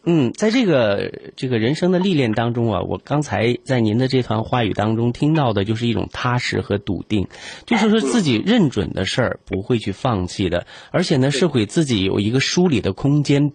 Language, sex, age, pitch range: Chinese, male, 30-49, 105-150 Hz